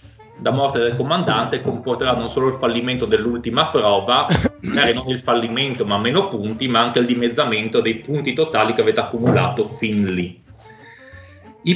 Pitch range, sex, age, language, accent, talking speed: 105-150 Hz, male, 30-49, Italian, native, 160 wpm